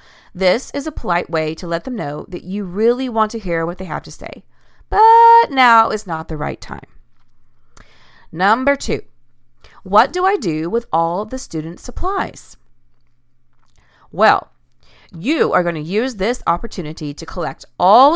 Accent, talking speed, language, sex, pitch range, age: American, 165 wpm, English, female, 160-235 Hz, 40-59